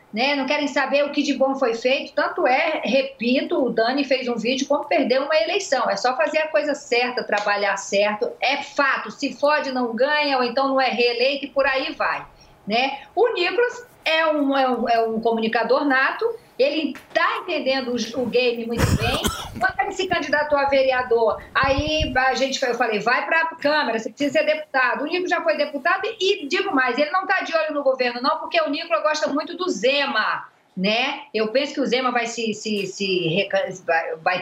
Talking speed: 205 wpm